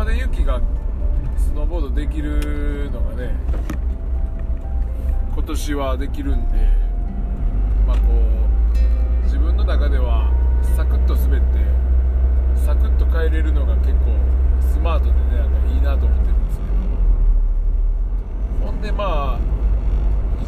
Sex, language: male, Japanese